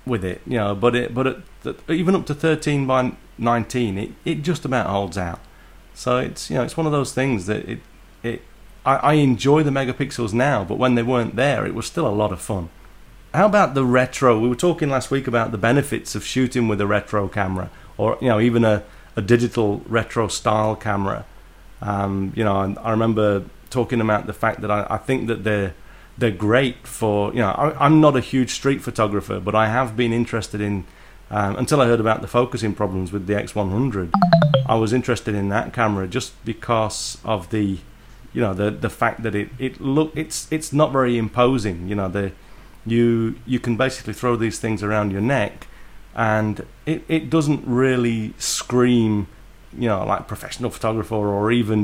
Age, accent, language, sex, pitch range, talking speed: 30-49, British, English, male, 105-130 Hz, 205 wpm